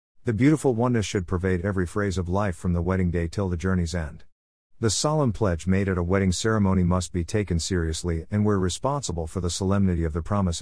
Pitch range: 85-115 Hz